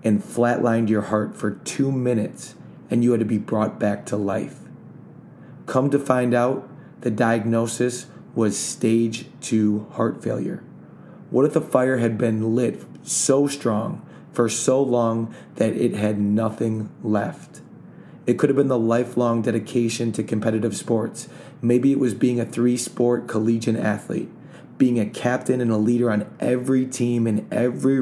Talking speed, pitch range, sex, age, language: 160 wpm, 110-125 Hz, male, 30-49, English